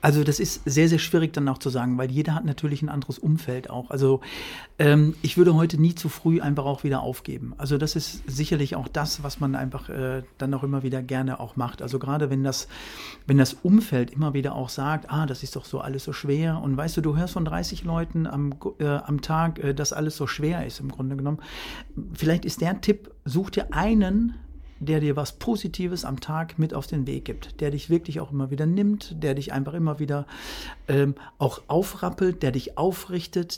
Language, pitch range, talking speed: German, 140-165 Hz, 215 wpm